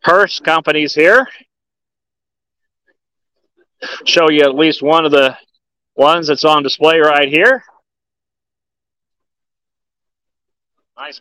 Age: 50-69